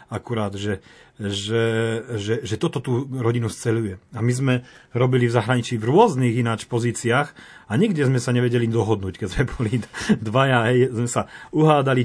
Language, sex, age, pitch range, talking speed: Slovak, male, 40-59, 110-130 Hz, 165 wpm